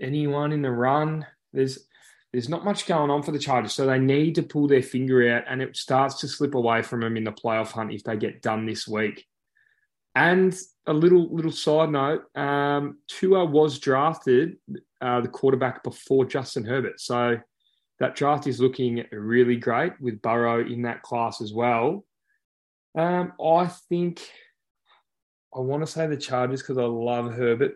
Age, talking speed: 20-39, 175 wpm